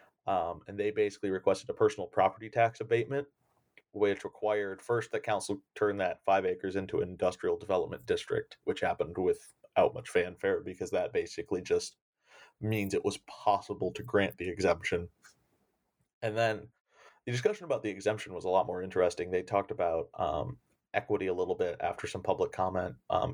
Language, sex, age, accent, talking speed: English, male, 30-49, American, 170 wpm